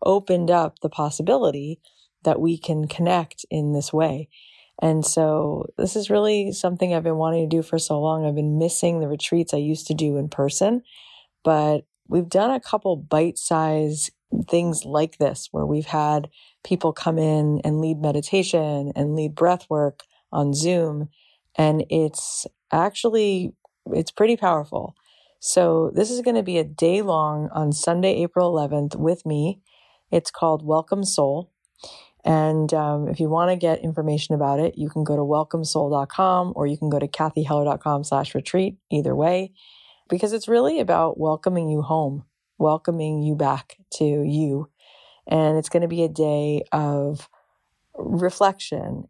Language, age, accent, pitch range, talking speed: English, 30-49, American, 150-175 Hz, 160 wpm